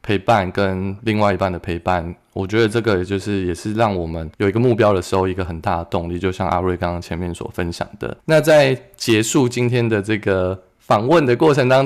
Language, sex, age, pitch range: Chinese, male, 20-39, 95-115 Hz